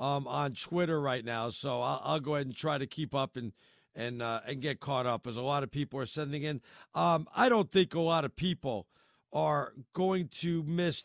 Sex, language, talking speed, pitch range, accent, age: male, English, 230 wpm, 155-215 Hz, American, 50-69